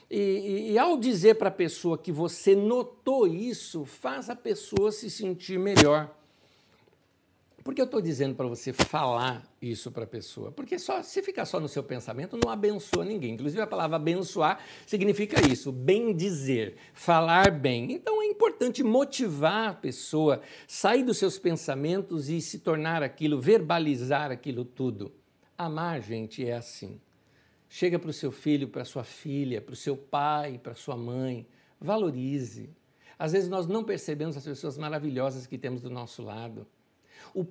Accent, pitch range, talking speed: Brazilian, 140-220 Hz, 165 wpm